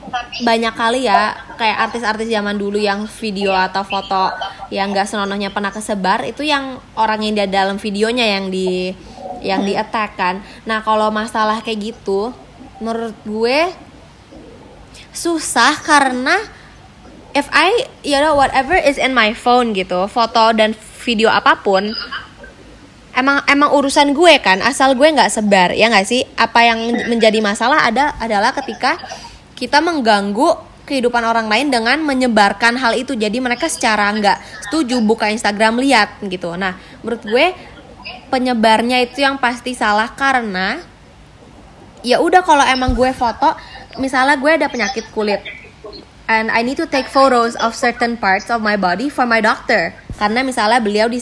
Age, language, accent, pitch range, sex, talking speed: 20-39, Indonesian, native, 210-265 Hz, female, 150 wpm